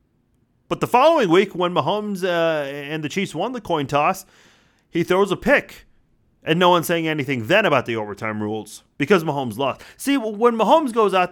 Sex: male